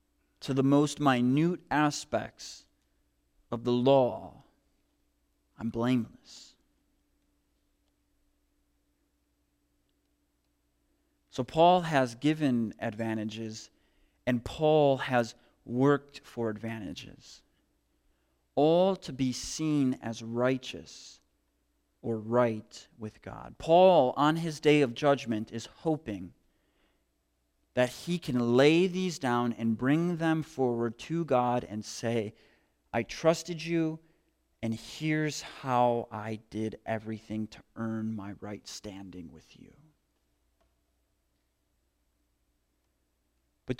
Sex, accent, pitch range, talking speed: male, American, 100-145 Hz, 95 wpm